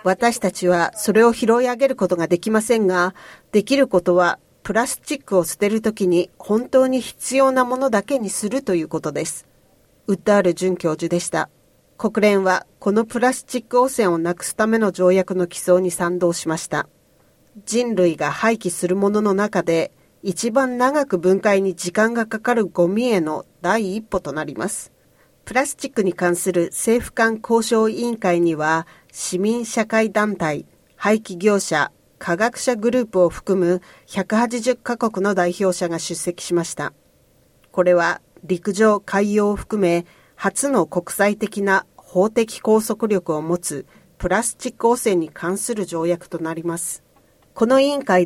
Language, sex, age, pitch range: Japanese, female, 40-59, 175-230 Hz